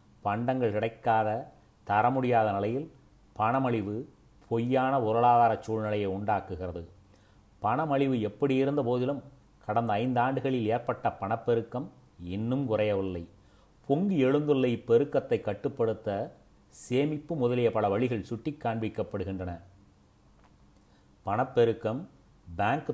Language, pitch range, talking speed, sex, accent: Tamil, 100-125 Hz, 80 wpm, male, native